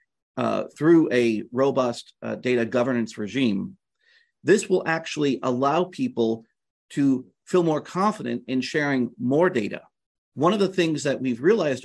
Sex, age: male, 40-59